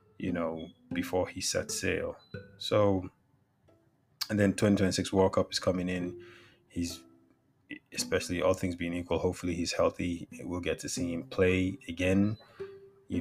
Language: English